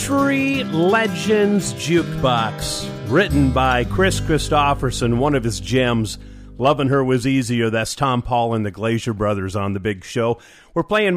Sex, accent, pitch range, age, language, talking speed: male, American, 120-170 Hz, 40-59, English, 150 wpm